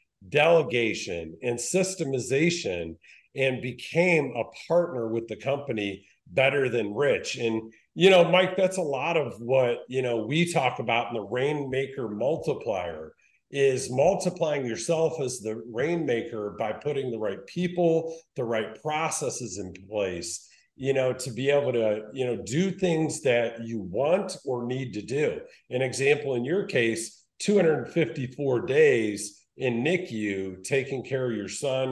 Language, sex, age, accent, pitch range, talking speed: English, male, 50-69, American, 115-165 Hz, 150 wpm